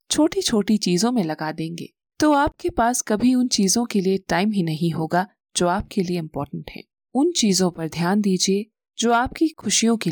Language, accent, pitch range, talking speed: Hindi, native, 175-245 Hz, 190 wpm